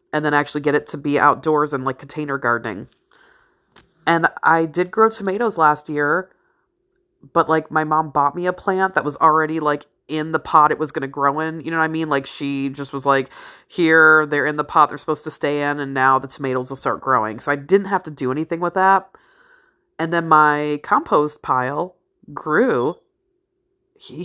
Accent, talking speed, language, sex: American, 205 wpm, English, female